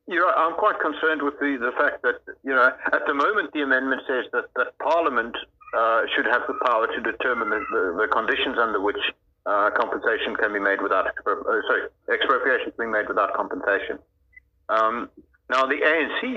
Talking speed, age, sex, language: 195 wpm, 50-69, male, English